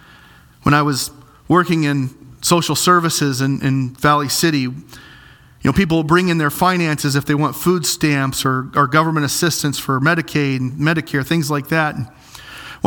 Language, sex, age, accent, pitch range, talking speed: English, male, 40-59, American, 135-165 Hz, 165 wpm